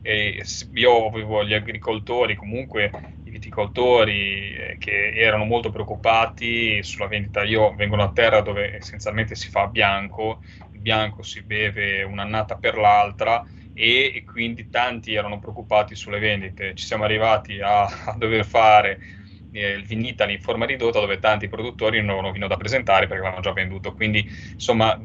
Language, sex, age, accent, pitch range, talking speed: Italian, male, 20-39, native, 100-110 Hz, 160 wpm